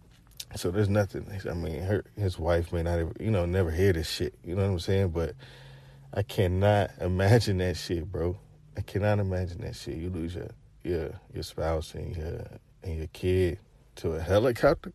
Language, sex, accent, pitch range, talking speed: English, male, American, 95-160 Hz, 195 wpm